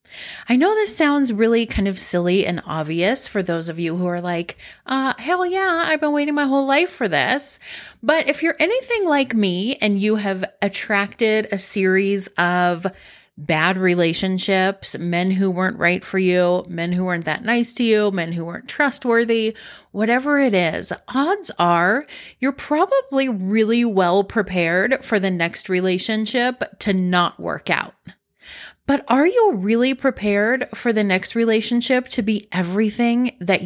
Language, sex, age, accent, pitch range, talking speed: English, female, 30-49, American, 190-275 Hz, 160 wpm